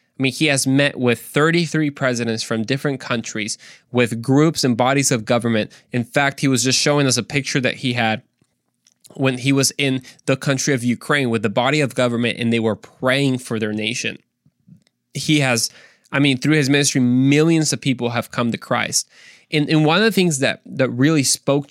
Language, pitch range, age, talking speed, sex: English, 120-150 Hz, 20-39, 200 wpm, male